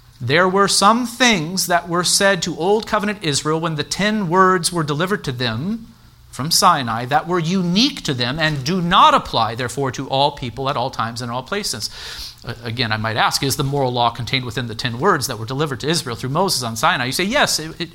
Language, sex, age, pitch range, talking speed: English, male, 40-59, 130-185 Hz, 220 wpm